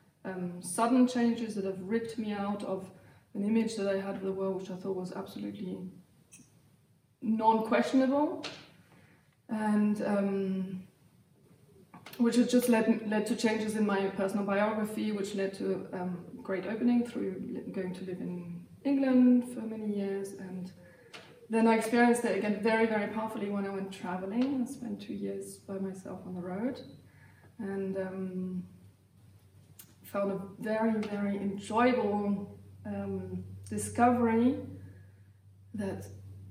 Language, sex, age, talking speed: English, female, 20-39, 135 wpm